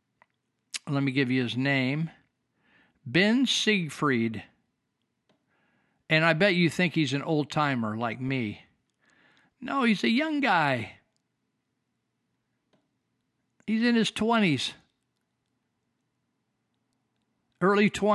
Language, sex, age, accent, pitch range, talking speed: English, male, 50-69, American, 135-190 Hz, 95 wpm